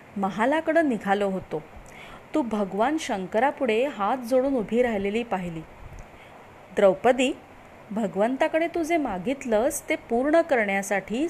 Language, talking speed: Marathi, 100 wpm